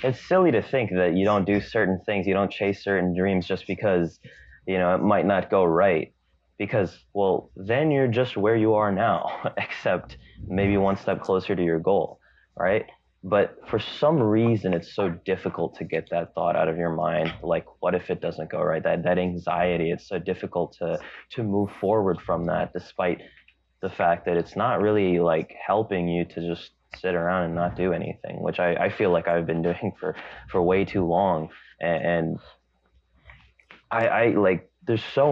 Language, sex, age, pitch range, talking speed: English, male, 20-39, 85-110 Hz, 190 wpm